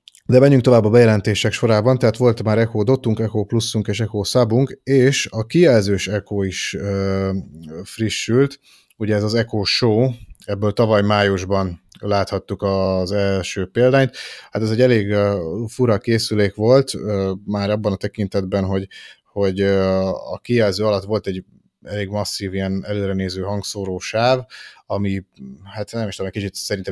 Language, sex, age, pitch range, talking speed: Hungarian, male, 30-49, 95-110 Hz, 150 wpm